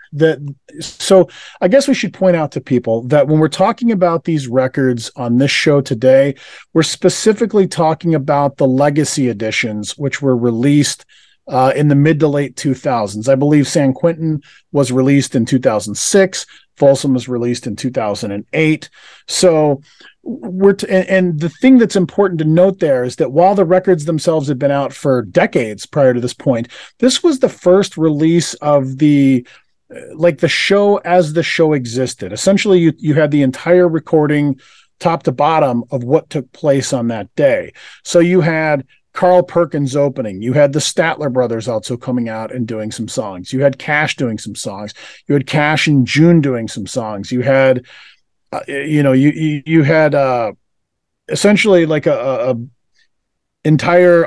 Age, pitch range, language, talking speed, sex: 40-59, 130-170 Hz, English, 170 wpm, male